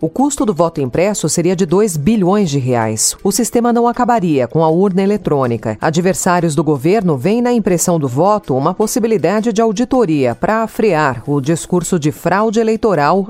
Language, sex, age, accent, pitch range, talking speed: Portuguese, female, 40-59, Brazilian, 145-210 Hz, 170 wpm